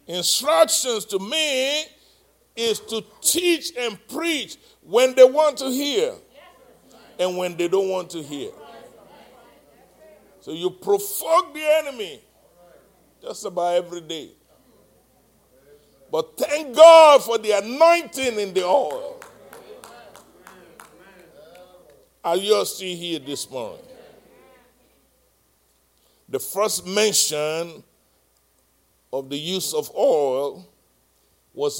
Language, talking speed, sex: English, 100 wpm, male